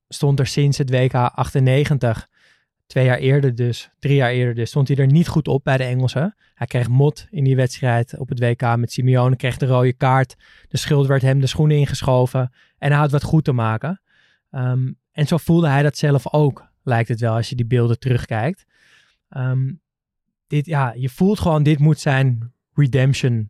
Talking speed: 190 wpm